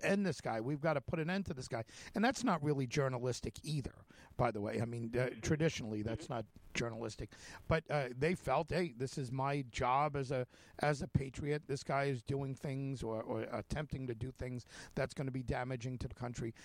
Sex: male